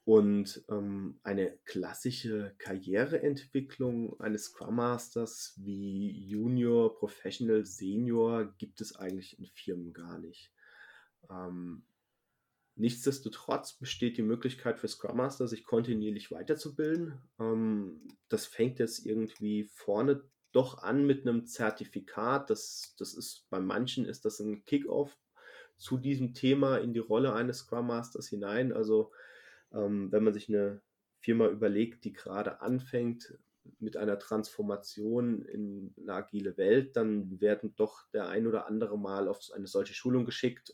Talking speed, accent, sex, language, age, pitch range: 135 wpm, German, male, German, 30-49, 105-125 Hz